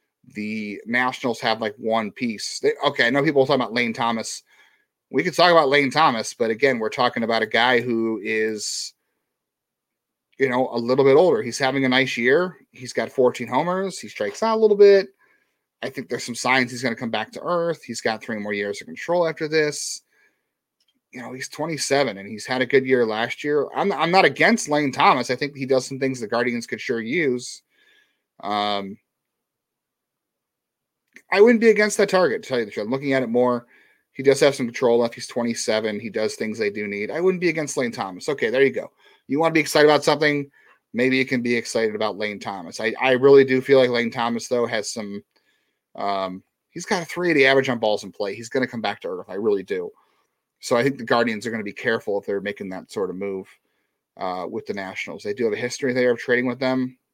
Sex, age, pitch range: male, 30-49, 115-160 Hz